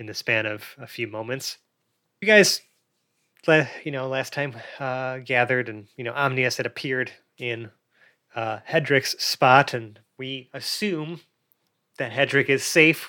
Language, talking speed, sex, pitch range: English, 145 wpm, male, 120-140 Hz